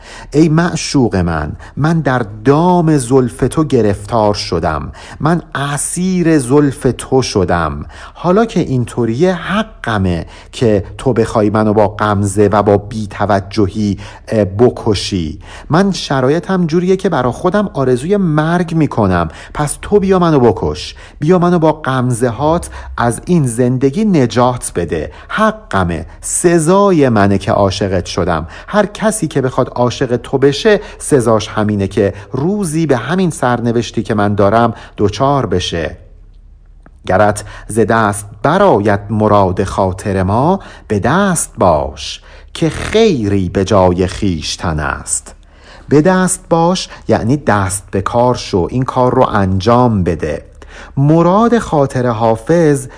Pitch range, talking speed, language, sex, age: 100-155 Hz, 120 wpm, Persian, male, 50-69